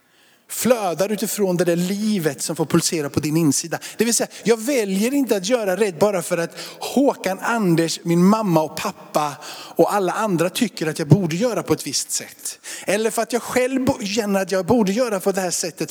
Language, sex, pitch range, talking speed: Swedish, male, 165-210 Hz, 205 wpm